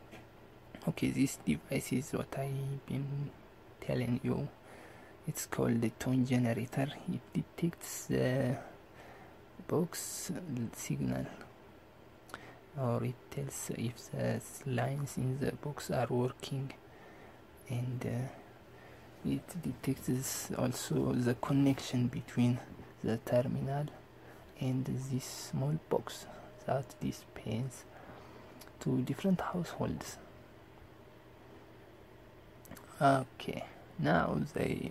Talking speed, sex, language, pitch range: 90 wpm, male, English, 115-140 Hz